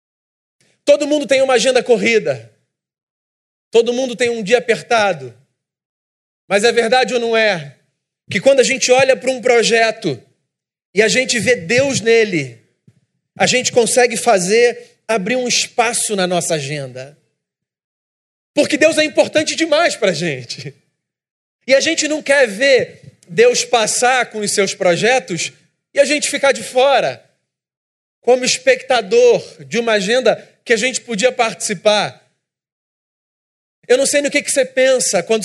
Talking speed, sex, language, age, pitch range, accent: 145 wpm, male, Portuguese, 40-59, 200-255 Hz, Brazilian